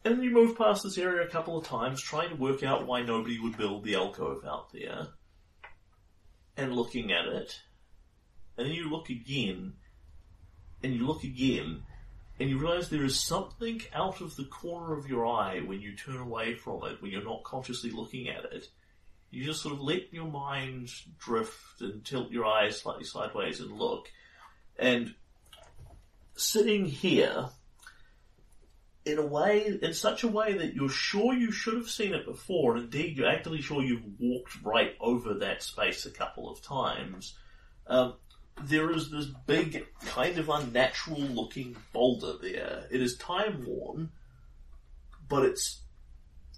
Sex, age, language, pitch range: male, 30-49, English, 105-165 Hz